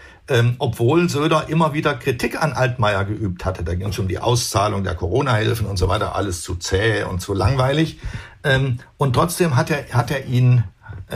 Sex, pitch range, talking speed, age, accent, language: male, 105-130 Hz, 195 wpm, 60-79, German, German